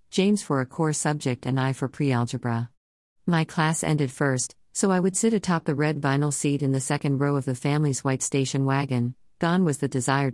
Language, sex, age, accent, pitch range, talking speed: English, female, 50-69, American, 130-160 Hz, 210 wpm